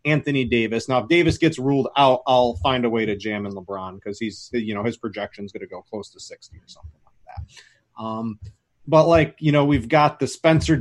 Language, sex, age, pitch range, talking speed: English, male, 30-49, 120-150 Hz, 235 wpm